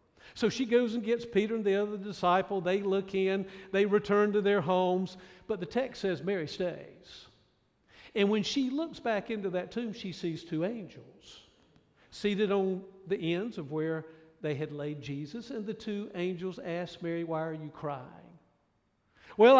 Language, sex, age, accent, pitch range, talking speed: English, male, 50-69, American, 180-225 Hz, 175 wpm